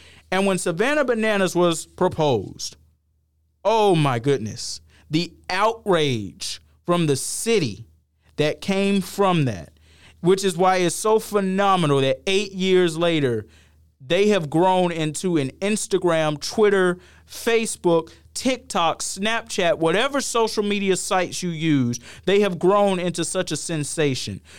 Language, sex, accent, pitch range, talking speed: English, male, American, 130-180 Hz, 125 wpm